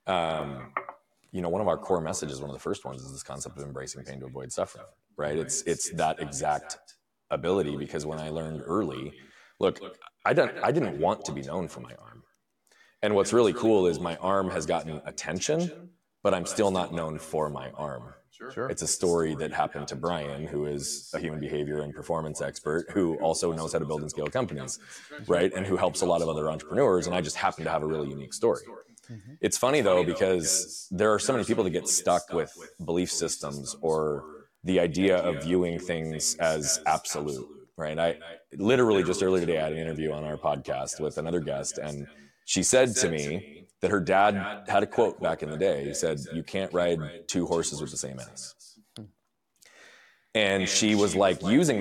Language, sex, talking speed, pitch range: English, male, 205 wpm, 75-95 Hz